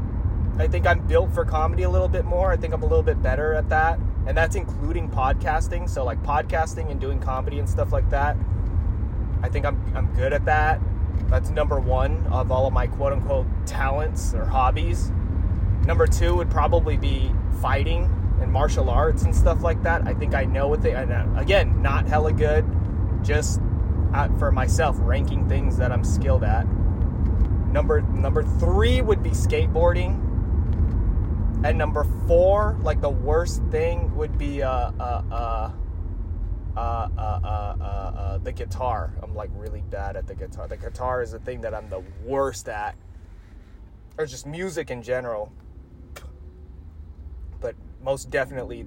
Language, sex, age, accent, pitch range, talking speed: English, male, 20-39, American, 85-95 Hz, 165 wpm